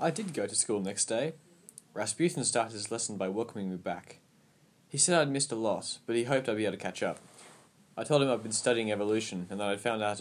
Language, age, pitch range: English, 20-39, 100-140 Hz